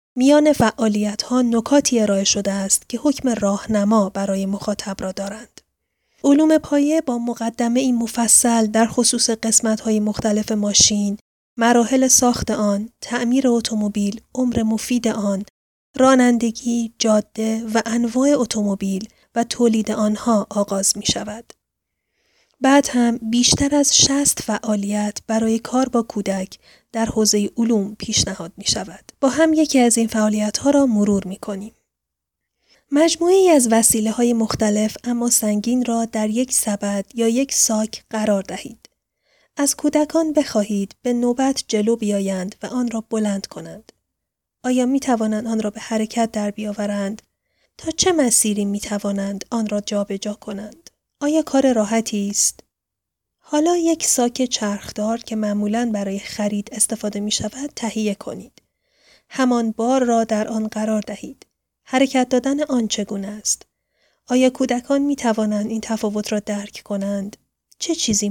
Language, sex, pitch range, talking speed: Persian, female, 210-245 Hz, 135 wpm